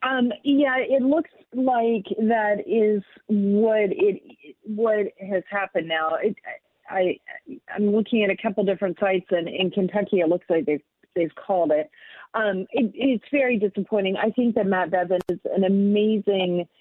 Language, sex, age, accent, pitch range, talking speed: English, female, 40-59, American, 175-215 Hz, 165 wpm